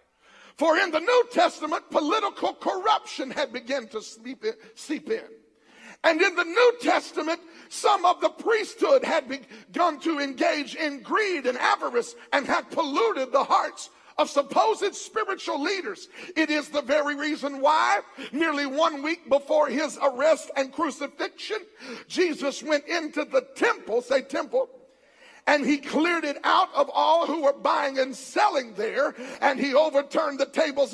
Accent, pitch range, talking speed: American, 280-350 Hz, 155 wpm